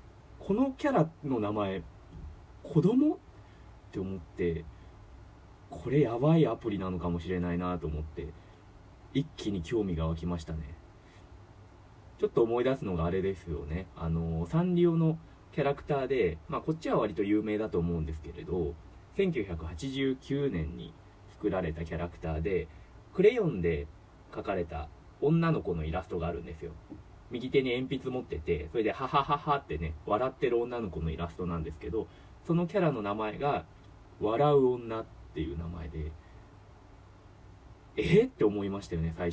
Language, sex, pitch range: Japanese, male, 85-130 Hz